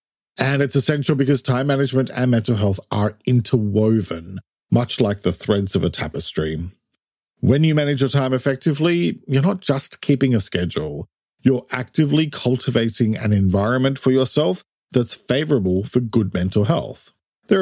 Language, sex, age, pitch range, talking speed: English, male, 40-59, 105-140 Hz, 150 wpm